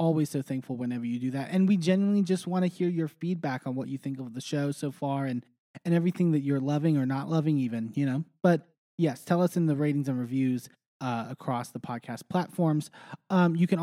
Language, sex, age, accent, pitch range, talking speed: English, male, 20-39, American, 125-165 Hz, 235 wpm